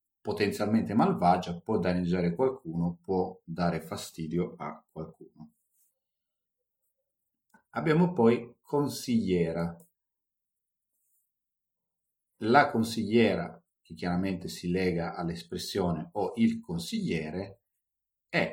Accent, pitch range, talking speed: native, 90-120 Hz, 80 wpm